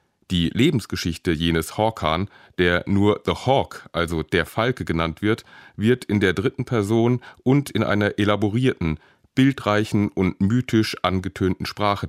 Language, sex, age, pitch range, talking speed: German, male, 30-49, 90-115 Hz, 135 wpm